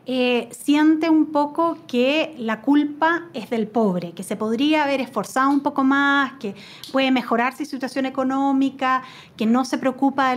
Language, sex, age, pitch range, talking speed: Spanish, female, 30-49, 220-290 Hz, 170 wpm